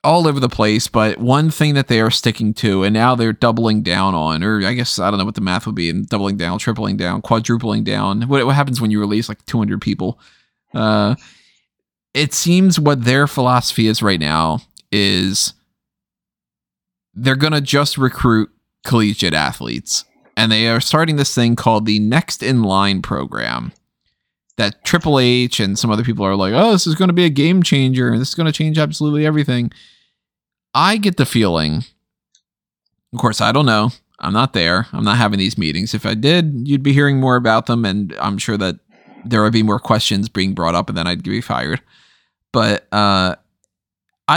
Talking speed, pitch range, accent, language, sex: 195 wpm, 105-135 Hz, American, English, male